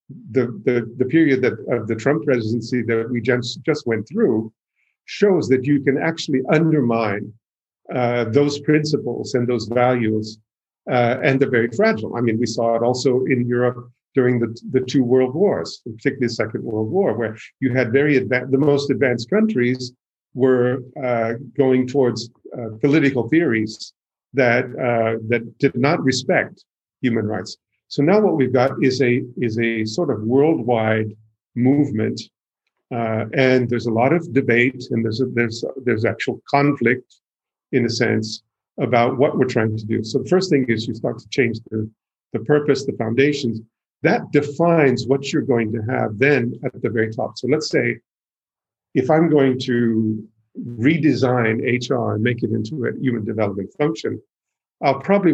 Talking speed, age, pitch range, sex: 170 wpm, 50-69, 115-135 Hz, male